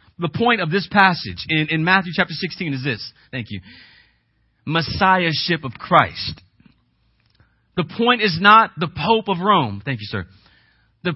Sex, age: male, 40-59